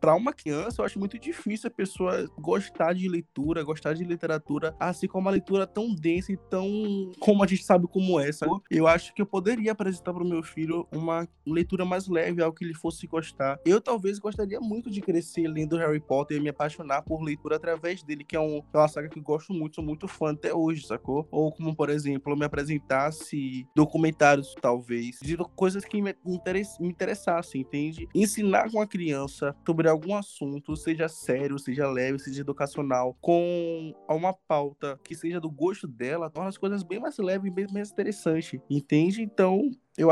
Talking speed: 195 wpm